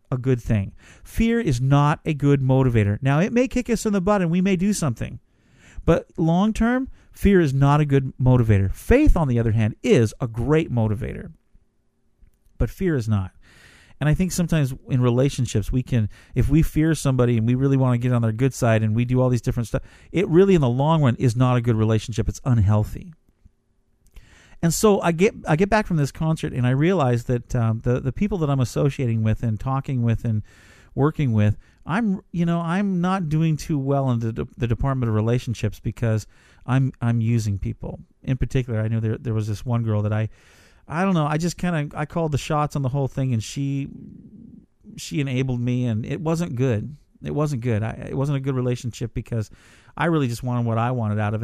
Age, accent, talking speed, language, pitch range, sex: 40-59, American, 220 wpm, English, 115-155 Hz, male